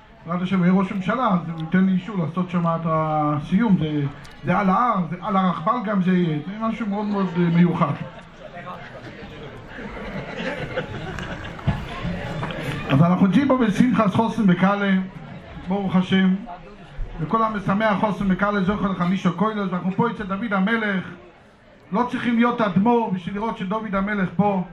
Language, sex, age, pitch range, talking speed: English, male, 50-69, 175-220 Hz, 130 wpm